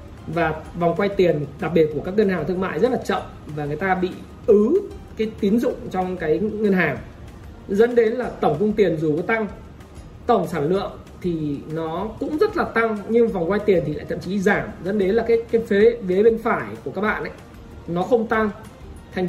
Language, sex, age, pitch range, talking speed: Vietnamese, male, 20-39, 165-215 Hz, 215 wpm